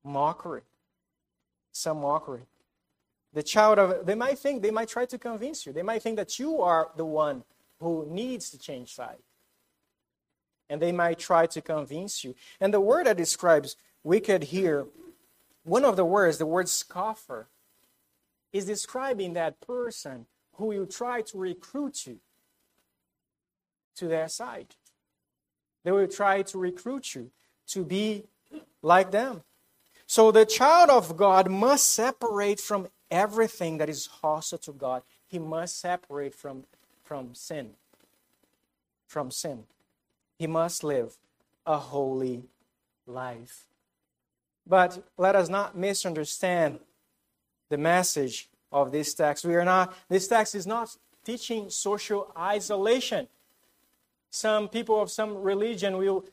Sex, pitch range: male, 155-220 Hz